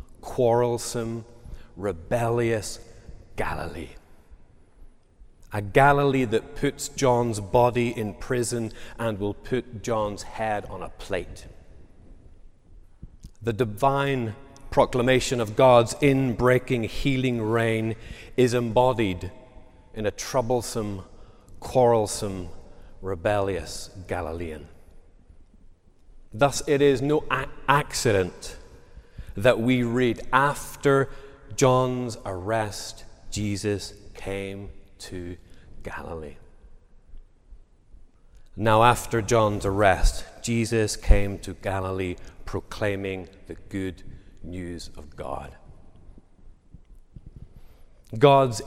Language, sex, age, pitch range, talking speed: English, male, 40-59, 95-125 Hz, 80 wpm